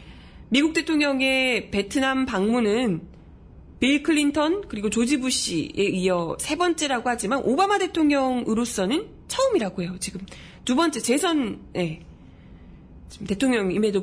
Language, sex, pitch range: Korean, female, 195-290 Hz